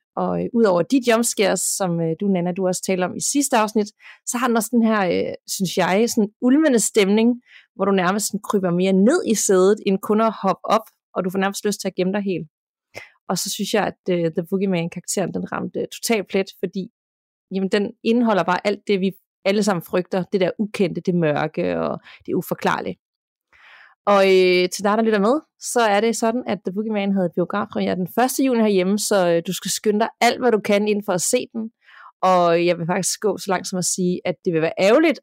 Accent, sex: native, female